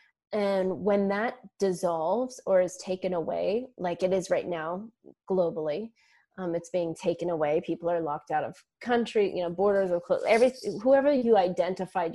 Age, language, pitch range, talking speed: 20-39, English, 170-200 Hz, 170 wpm